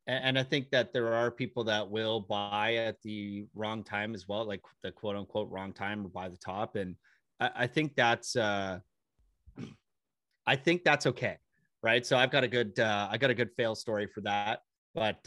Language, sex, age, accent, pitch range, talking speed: English, male, 30-49, American, 105-125 Hz, 200 wpm